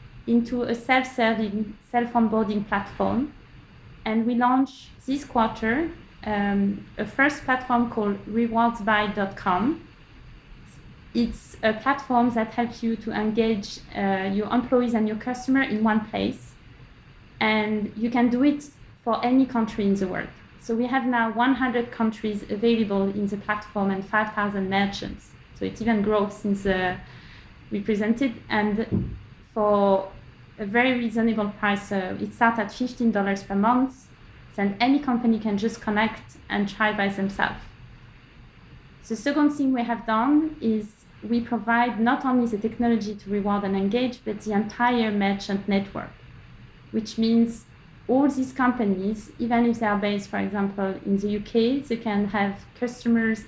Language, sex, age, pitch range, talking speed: English, female, 20-39, 205-240 Hz, 145 wpm